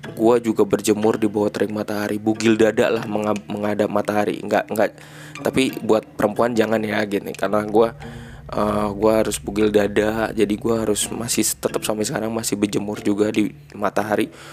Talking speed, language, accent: 165 wpm, Indonesian, native